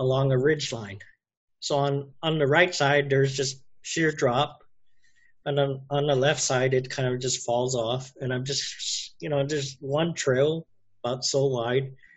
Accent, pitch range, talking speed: American, 130-170 Hz, 185 wpm